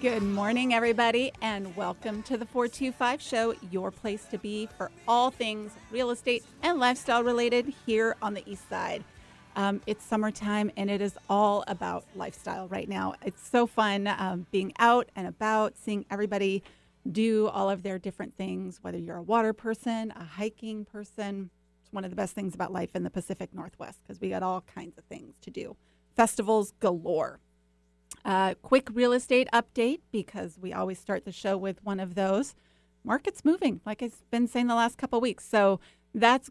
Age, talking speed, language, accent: 30-49, 185 wpm, English, American